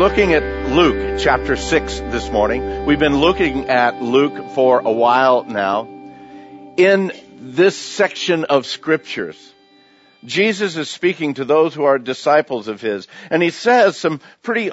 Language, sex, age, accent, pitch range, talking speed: English, male, 50-69, American, 130-165 Hz, 145 wpm